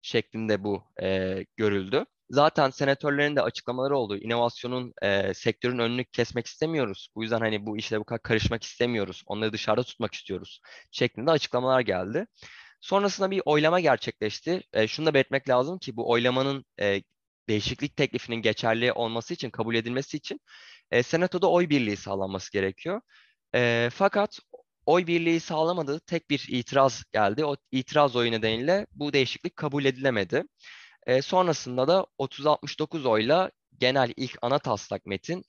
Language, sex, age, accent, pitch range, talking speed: Turkish, male, 20-39, native, 110-145 Hz, 145 wpm